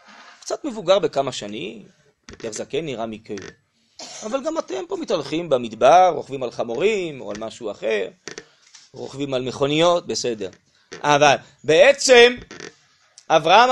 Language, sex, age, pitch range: Hebrew, male, 30-49, 175-275 Hz